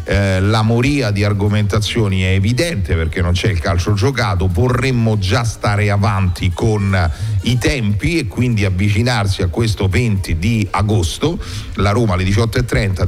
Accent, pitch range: native, 95-115 Hz